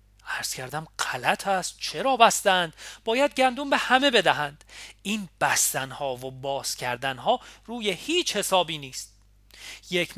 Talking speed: 130 wpm